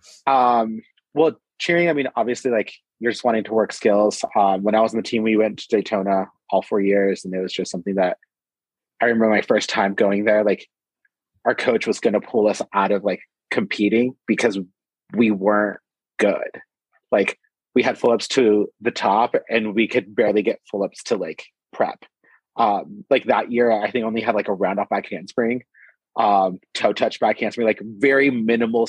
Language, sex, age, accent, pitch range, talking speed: English, male, 30-49, American, 105-120 Hz, 200 wpm